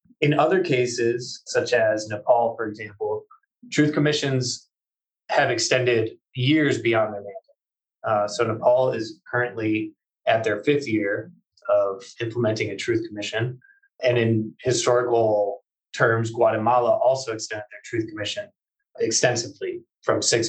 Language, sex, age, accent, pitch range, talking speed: English, male, 20-39, American, 110-175 Hz, 125 wpm